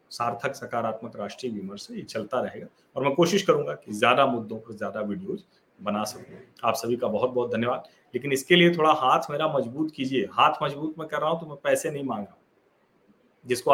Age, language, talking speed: 40-59, Hindi, 195 wpm